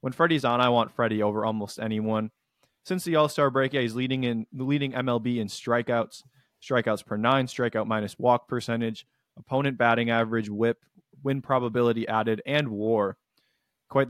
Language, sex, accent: English, male, American